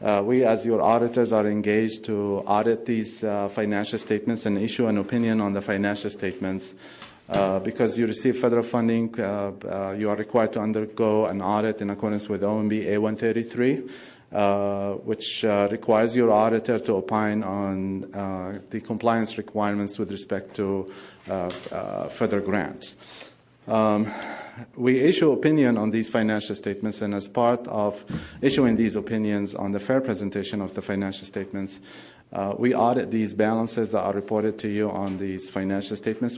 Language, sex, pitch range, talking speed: English, male, 100-115 Hz, 160 wpm